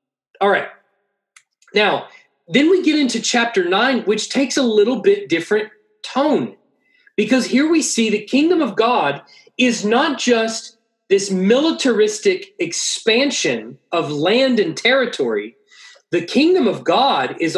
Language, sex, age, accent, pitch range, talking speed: English, male, 40-59, American, 180-260 Hz, 135 wpm